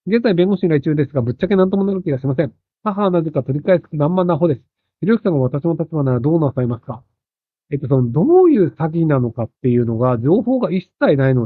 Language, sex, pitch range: Japanese, male, 135-215 Hz